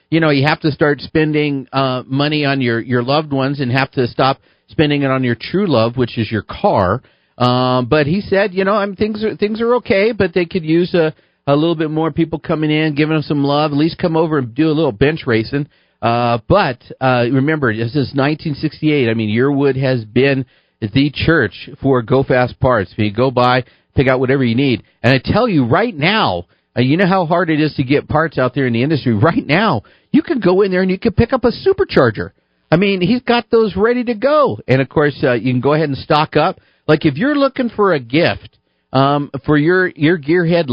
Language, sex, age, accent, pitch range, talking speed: English, male, 50-69, American, 125-165 Hz, 235 wpm